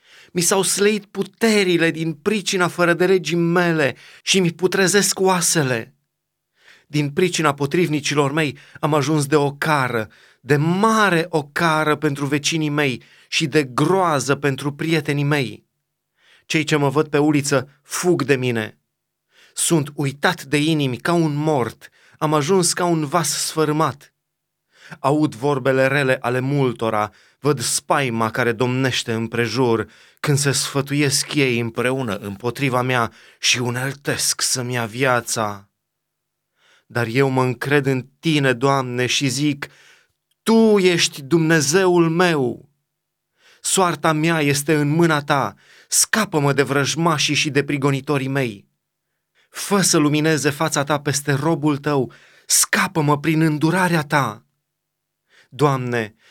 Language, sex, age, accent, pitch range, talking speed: Romanian, male, 30-49, native, 135-165 Hz, 125 wpm